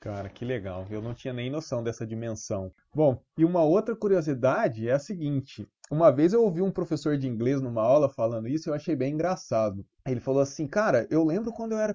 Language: Portuguese